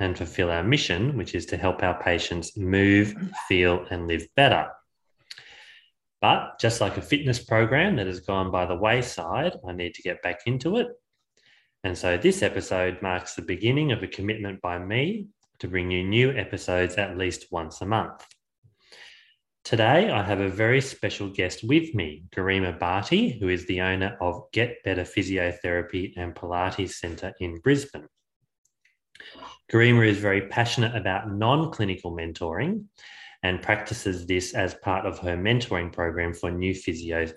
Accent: Australian